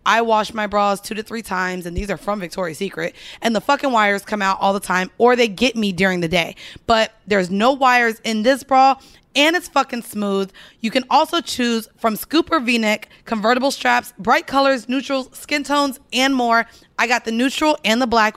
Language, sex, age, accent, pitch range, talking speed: English, female, 20-39, American, 220-275 Hz, 210 wpm